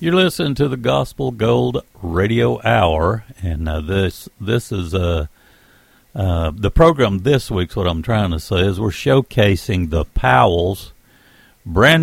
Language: English